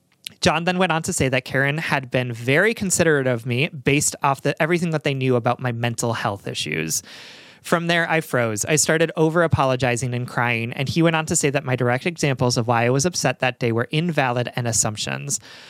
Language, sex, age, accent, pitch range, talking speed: English, male, 30-49, American, 120-160 Hz, 215 wpm